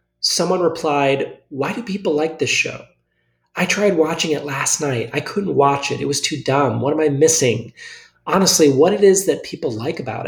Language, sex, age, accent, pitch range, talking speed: English, male, 30-49, American, 125-165 Hz, 200 wpm